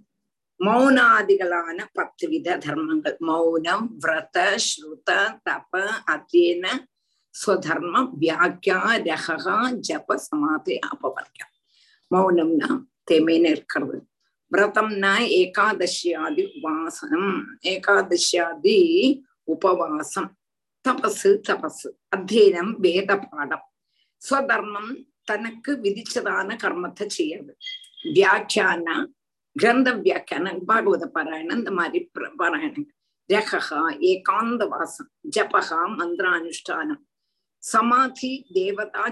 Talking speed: 65 wpm